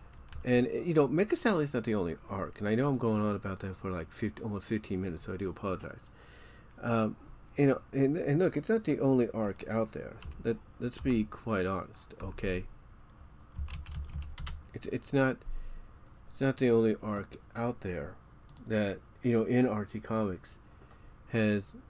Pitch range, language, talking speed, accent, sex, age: 100-120 Hz, English, 175 wpm, American, male, 40-59